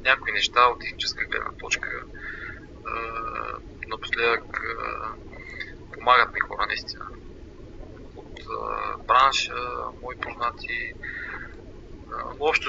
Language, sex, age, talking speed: Bulgarian, male, 20-39, 95 wpm